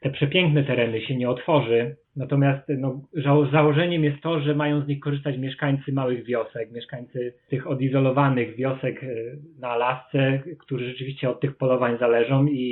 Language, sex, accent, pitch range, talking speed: Polish, male, native, 120-140 Hz, 150 wpm